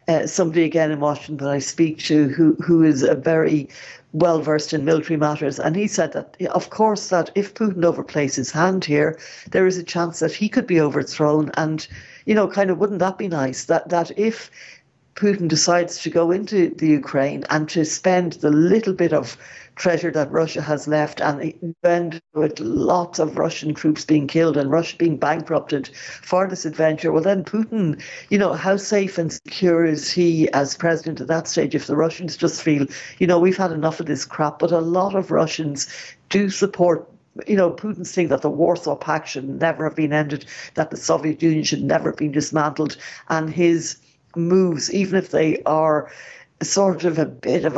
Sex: female